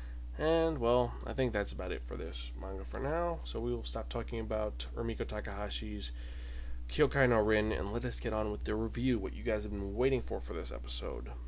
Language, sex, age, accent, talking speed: English, male, 20-39, American, 215 wpm